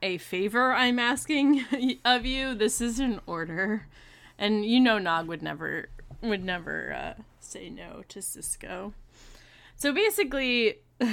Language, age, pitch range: English, 20-39, 165-220 Hz